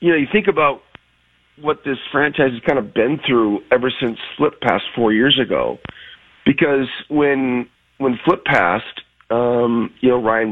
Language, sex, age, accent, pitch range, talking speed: English, male, 40-59, American, 115-150 Hz, 165 wpm